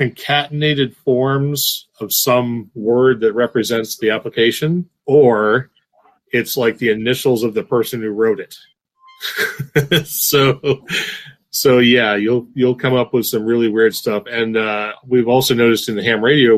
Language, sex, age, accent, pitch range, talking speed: English, male, 40-59, American, 110-135 Hz, 150 wpm